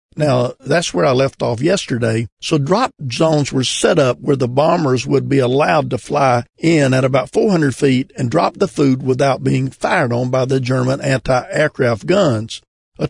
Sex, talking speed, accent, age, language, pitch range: male, 185 wpm, American, 50-69, English, 125-165 Hz